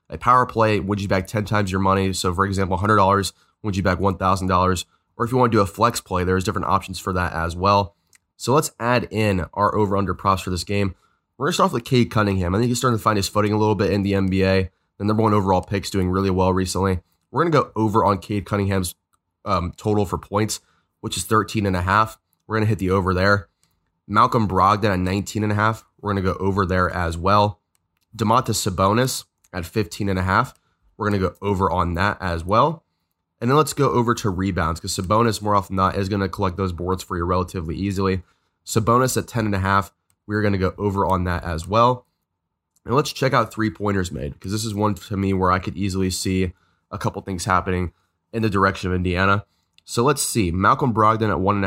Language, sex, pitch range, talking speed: English, male, 90-105 Hz, 235 wpm